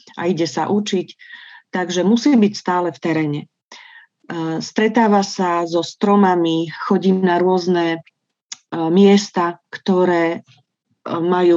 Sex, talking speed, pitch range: female, 105 wpm, 170-215 Hz